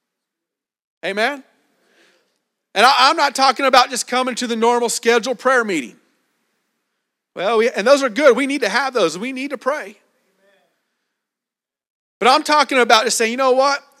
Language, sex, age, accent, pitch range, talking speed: English, male, 40-59, American, 225-285 Hz, 160 wpm